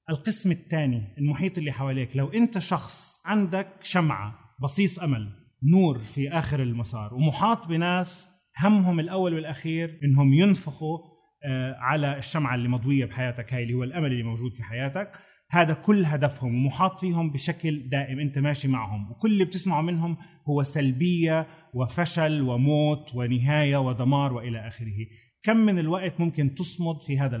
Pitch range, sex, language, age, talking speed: 125-170 Hz, male, Arabic, 30-49, 140 wpm